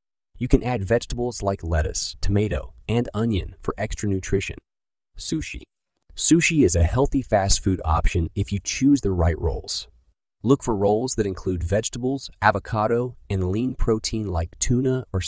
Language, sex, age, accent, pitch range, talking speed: English, male, 30-49, American, 85-115 Hz, 155 wpm